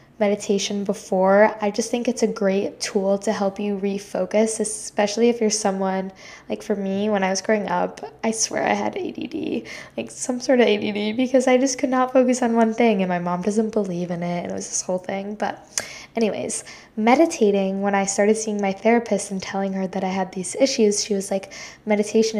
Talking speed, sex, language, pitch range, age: 210 wpm, female, English, 195-220 Hz, 10-29